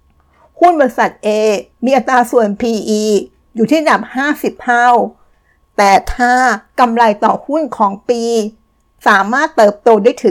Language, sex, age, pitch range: Thai, female, 60-79, 215-250 Hz